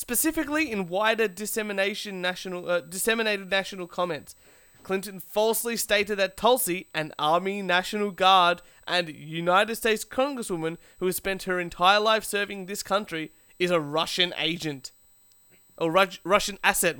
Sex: male